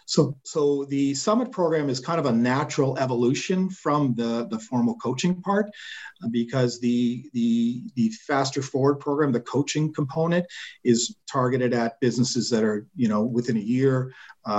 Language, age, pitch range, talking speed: English, 50-69, 120-150 Hz, 160 wpm